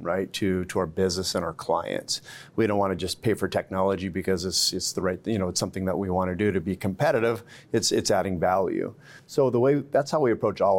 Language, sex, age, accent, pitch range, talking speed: English, male, 30-49, American, 95-110 Hz, 250 wpm